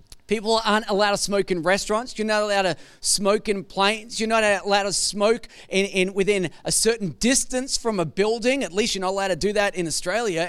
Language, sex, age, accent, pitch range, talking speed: English, male, 30-49, Australian, 205-270 Hz, 215 wpm